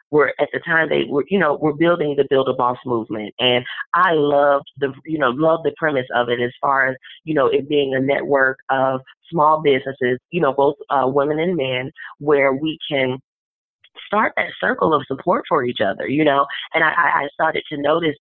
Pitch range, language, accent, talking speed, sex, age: 130-155 Hz, English, American, 205 wpm, female, 30-49